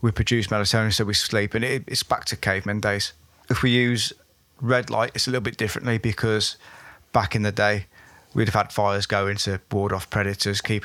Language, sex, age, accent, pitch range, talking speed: English, male, 20-39, British, 105-125 Hz, 210 wpm